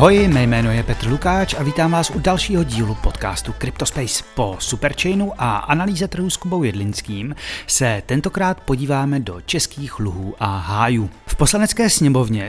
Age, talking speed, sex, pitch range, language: 30-49, 160 wpm, male, 115-160 Hz, Czech